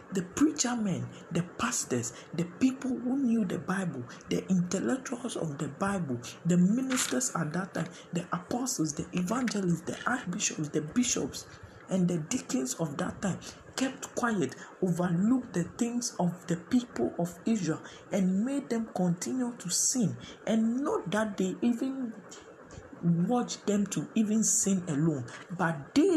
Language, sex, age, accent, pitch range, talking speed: English, male, 50-69, Nigerian, 160-225 Hz, 145 wpm